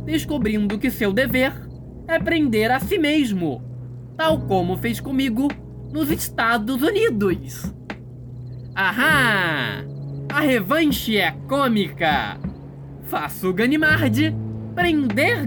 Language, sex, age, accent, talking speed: Portuguese, male, 20-39, Brazilian, 95 wpm